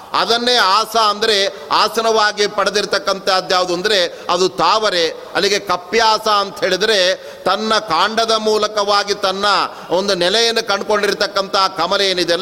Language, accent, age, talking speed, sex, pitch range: Kannada, native, 30-49, 100 wpm, male, 185-220 Hz